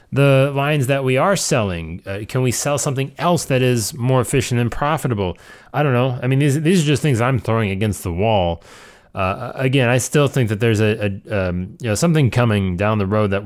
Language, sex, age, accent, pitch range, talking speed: English, male, 30-49, American, 100-130 Hz, 225 wpm